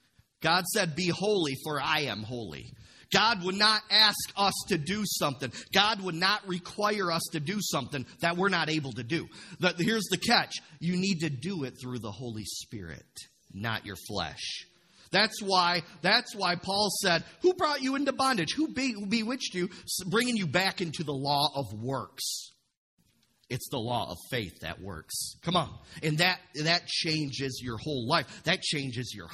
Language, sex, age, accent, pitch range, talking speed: English, male, 40-59, American, 125-195 Hz, 180 wpm